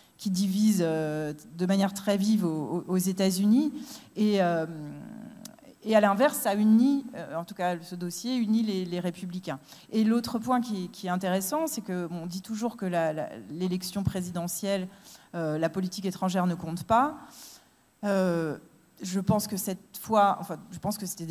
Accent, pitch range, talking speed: French, 160-200 Hz, 145 wpm